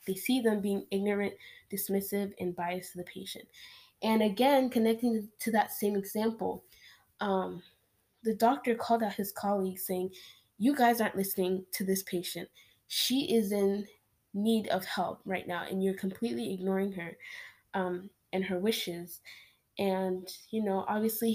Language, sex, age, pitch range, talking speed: English, female, 10-29, 185-225 Hz, 150 wpm